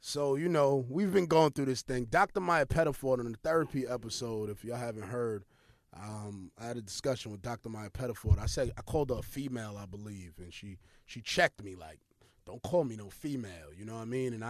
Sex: male